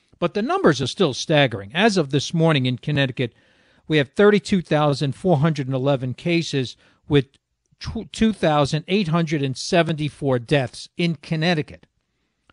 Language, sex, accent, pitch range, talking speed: English, male, American, 130-170 Hz, 100 wpm